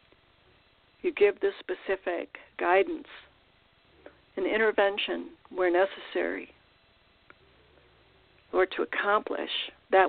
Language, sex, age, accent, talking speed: English, female, 60-79, American, 75 wpm